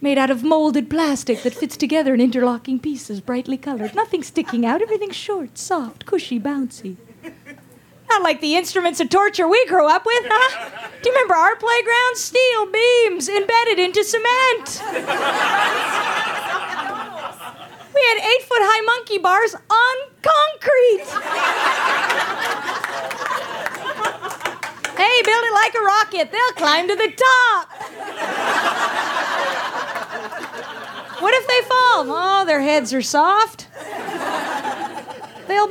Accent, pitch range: American, 275-440 Hz